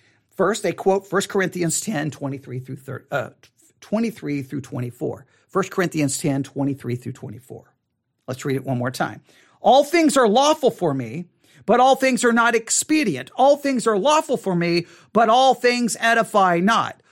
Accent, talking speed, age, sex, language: American, 170 wpm, 50-69, male, English